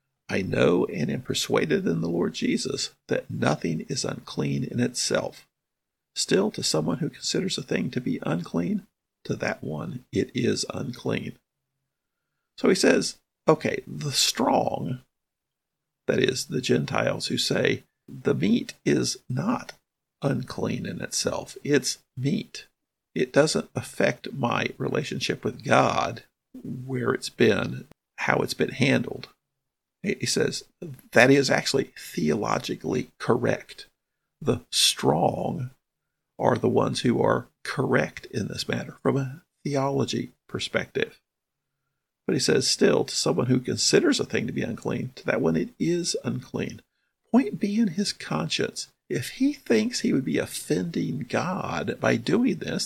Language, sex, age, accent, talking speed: English, male, 50-69, American, 140 wpm